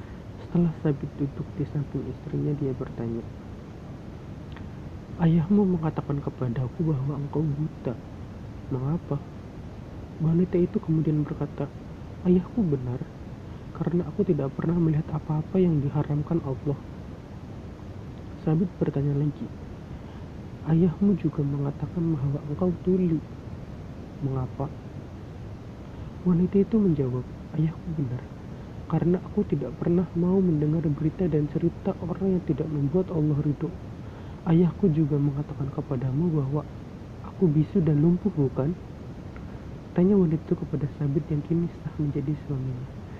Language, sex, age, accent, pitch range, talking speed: Indonesian, male, 40-59, native, 135-165 Hz, 110 wpm